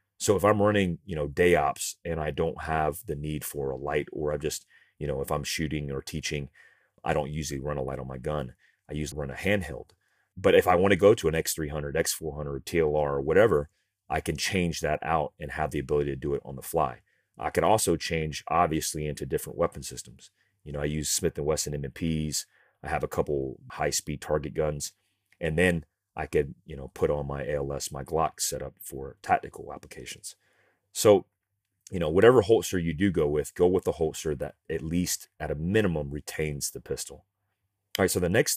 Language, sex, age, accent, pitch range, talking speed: English, male, 30-49, American, 75-90 Hz, 210 wpm